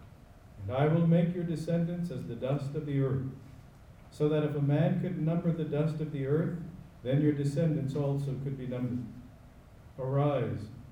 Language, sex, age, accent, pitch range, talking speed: English, male, 50-69, American, 115-140 Hz, 170 wpm